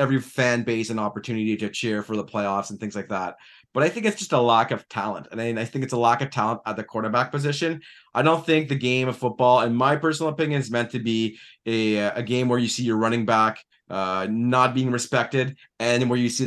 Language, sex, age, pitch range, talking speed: English, male, 30-49, 115-145 Hz, 250 wpm